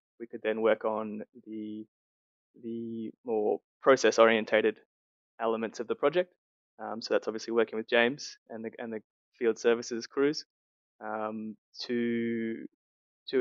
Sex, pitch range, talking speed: male, 110-120 Hz, 140 wpm